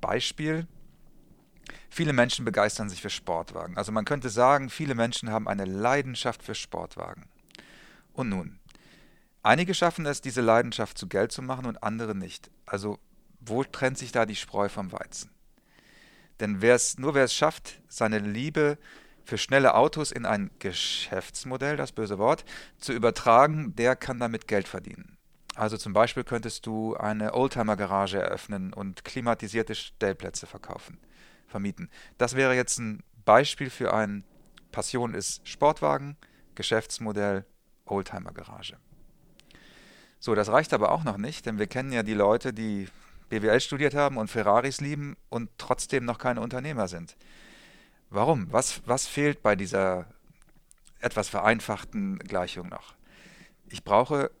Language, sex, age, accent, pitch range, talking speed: German, male, 40-59, German, 105-135 Hz, 140 wpm